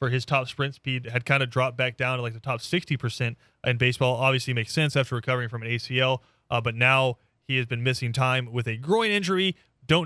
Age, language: 30-49, English